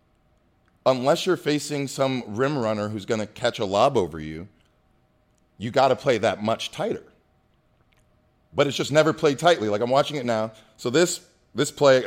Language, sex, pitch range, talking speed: English, male, 125-170 Hz, 180 wpm